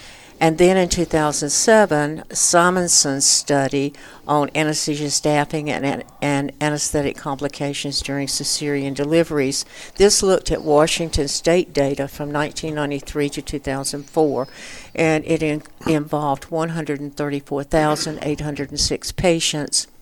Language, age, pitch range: English, 60-79, 140-160 Hz